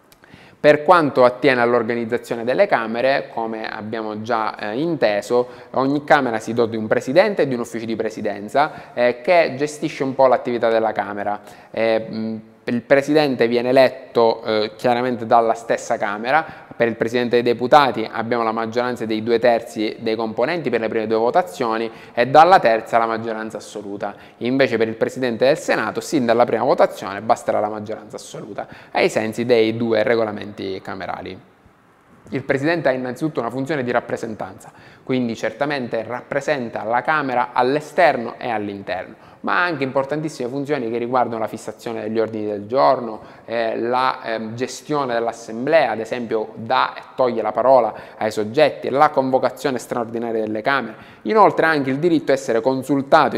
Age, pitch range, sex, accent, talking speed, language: 20-39, 110-130 Hz, male, native, 160 wpm, Italian